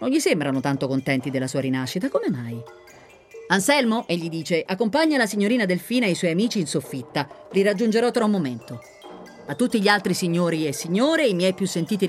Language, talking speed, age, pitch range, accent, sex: Italian, 195 wpm, 30-49, 135-205 Hz, native, female